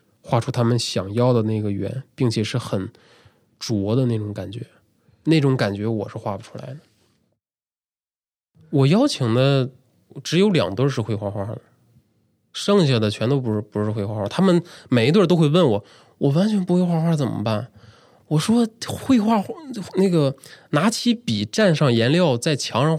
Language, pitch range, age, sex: Chinese, 110-150 Hz, 20-39, male